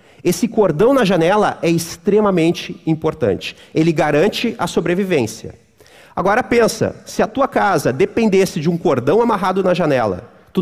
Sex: male